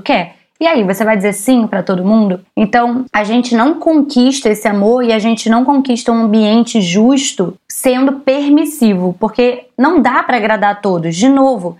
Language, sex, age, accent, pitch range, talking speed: Portuguese, female, 20-39, Brazilian, 220-270 Hz, 180 wpm